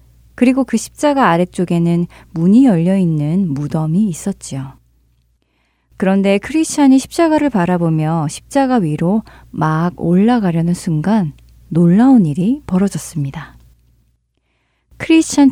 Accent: native